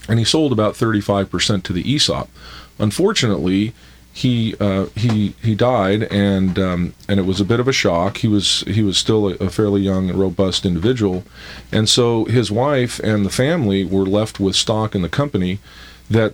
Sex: male